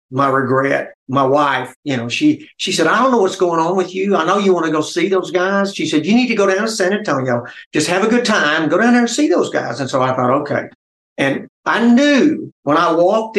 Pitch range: 135-185 Hz